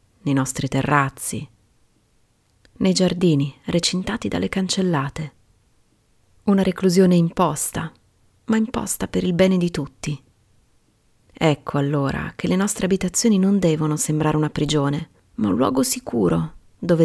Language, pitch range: Italian, 140-190 Hz